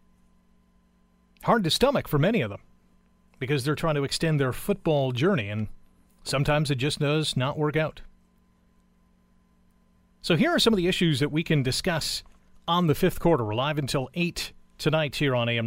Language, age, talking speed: English, 40-59, 175 wpm